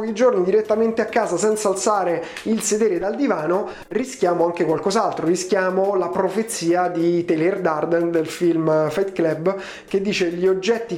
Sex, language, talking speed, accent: male, Italian, 155 wpm, native